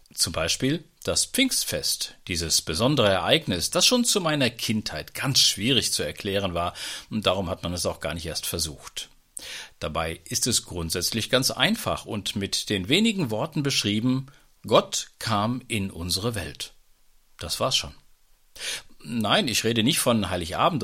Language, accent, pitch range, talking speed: German, German, 85-140 Hz, 155 wpm